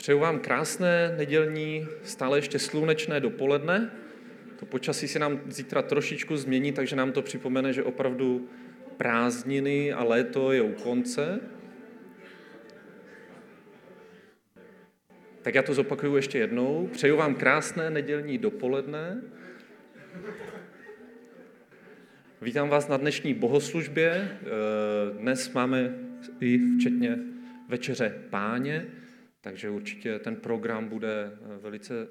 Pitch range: 120-150 Hz